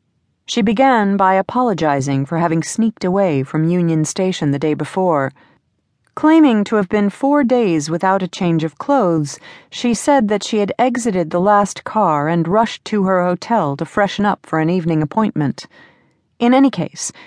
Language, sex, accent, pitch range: English, female, American, 155-210 Hz